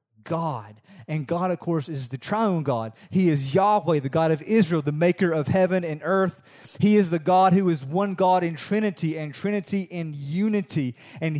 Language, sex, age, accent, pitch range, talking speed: English, male, 30-49, American, 145-190 Hz, 195 wpm